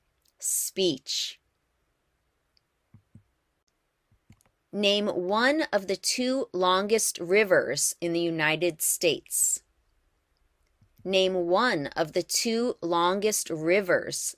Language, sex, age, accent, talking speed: English, female, 30-49, American, 80 wpm